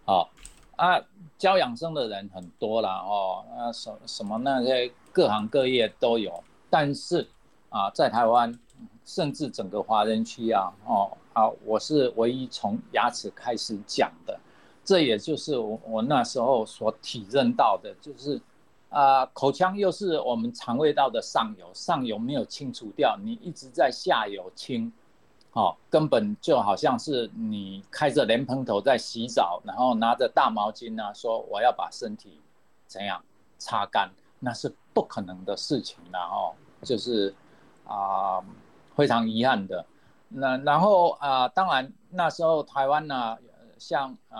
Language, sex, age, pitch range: Chinese, male, 50-69, 110-150 Hz